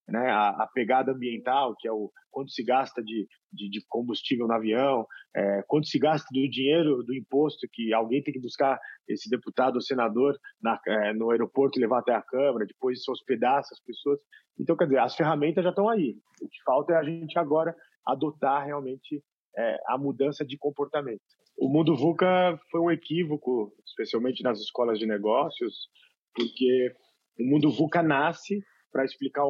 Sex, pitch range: male, 120-155 Hz